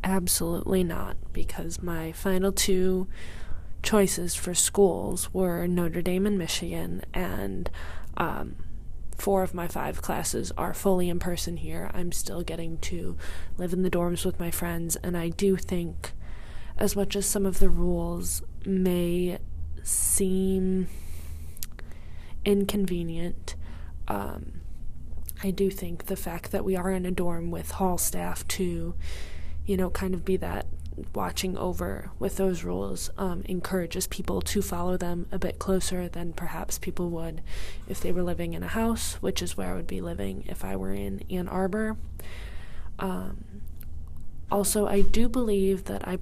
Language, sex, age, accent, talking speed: English, female, 20-39, American, 155 wpm